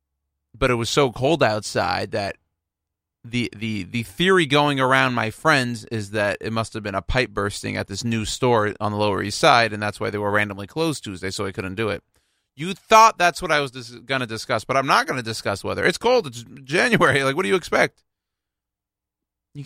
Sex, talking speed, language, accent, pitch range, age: male, 225 wpm, English, American, 100-130 Hz, 30-49